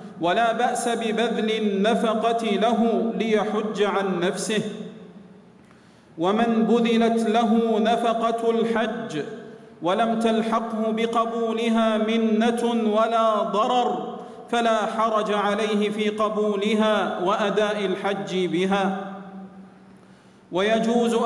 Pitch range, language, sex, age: 205-230 Hz, Arabic, male, 40-59